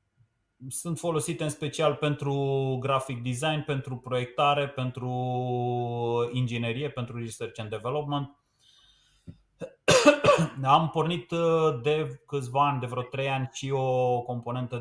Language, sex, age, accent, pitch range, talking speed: Romanian, male, 30-49, native, 110-135 Hz, 110 wpm